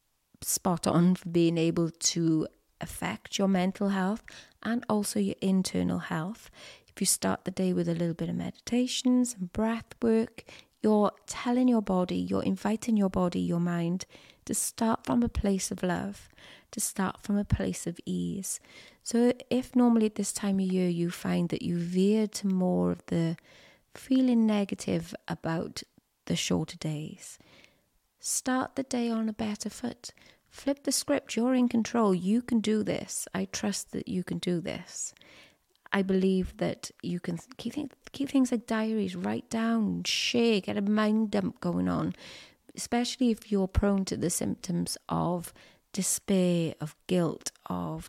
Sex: female